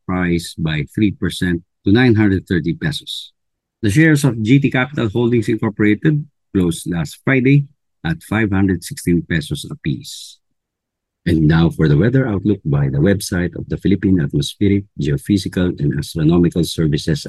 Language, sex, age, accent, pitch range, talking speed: English, male, 50-69, Filipino, 85-125 Hz, 125 wpm